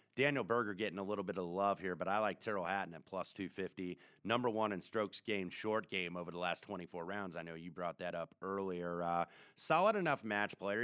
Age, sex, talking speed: 30-49, male, 240 wpm